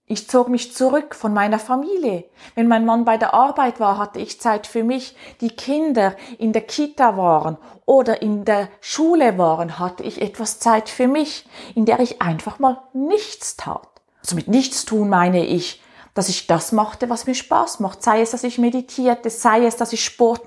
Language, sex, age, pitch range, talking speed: German, female, 30-49, 205-265 Hz, 200 wpm